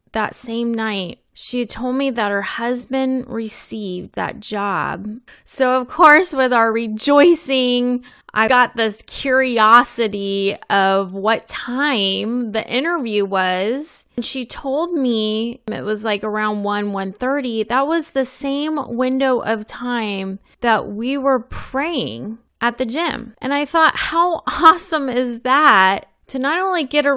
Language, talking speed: English, 145 wpm